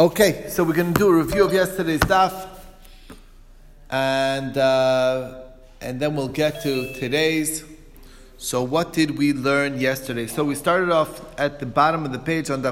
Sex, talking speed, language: male, 175 wpm, English